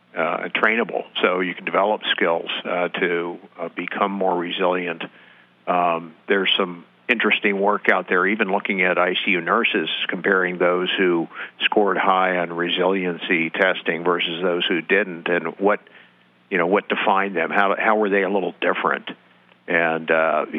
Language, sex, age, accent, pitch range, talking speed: English, male, 50-69, American, 80-100 Hz, 155 wpm